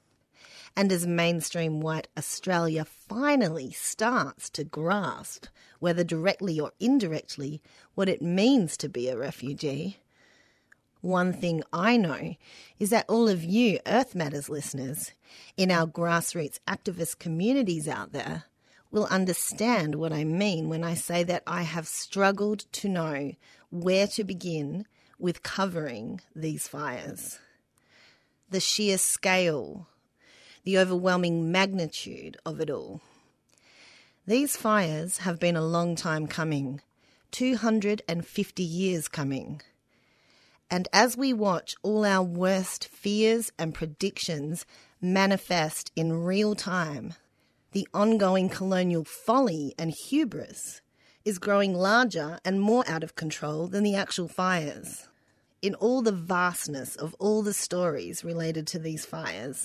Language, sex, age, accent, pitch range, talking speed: English, female, 40-59, Australian, 160-200 Hz, 130 wpm